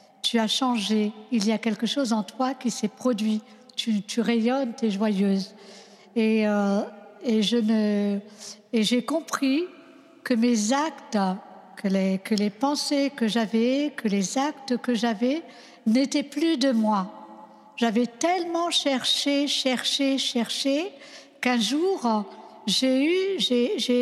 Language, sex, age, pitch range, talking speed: French, female, 60-79, 220-270 Hz, 140 wpm